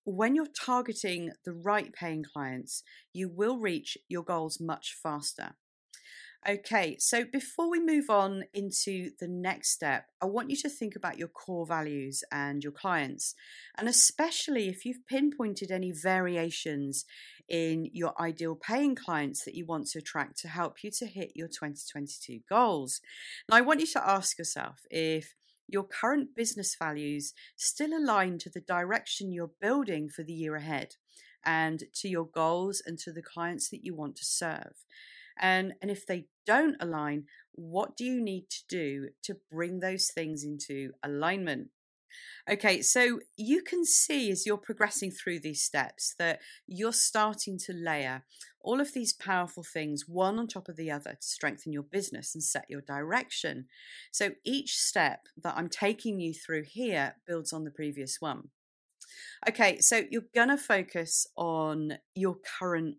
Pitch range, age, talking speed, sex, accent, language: 160-220 Hz, 40-59, 165 wpm, female, British, English